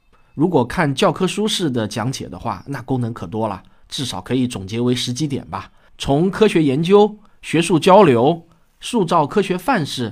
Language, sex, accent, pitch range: Chinese, male, native, 125-170 Hz